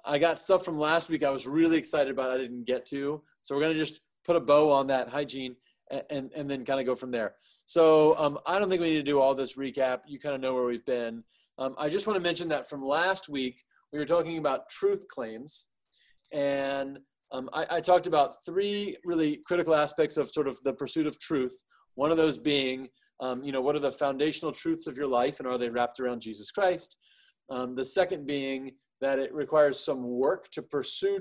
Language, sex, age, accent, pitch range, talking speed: English, male, 30-49, American, 130-160 Hz, 225 wpm